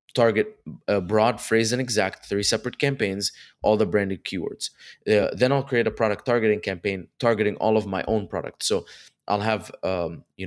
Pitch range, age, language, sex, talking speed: 95-110 Hz, 20-39, English, male, 185 wpm